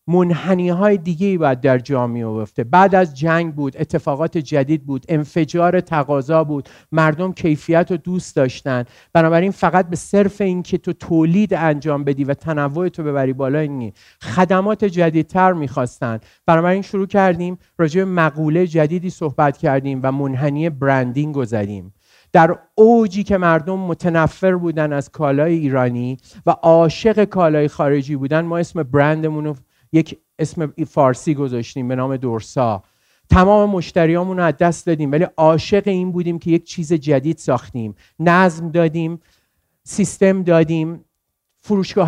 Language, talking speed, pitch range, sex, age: Persian, 140 wpm, 140-175 Hz, male, 50-69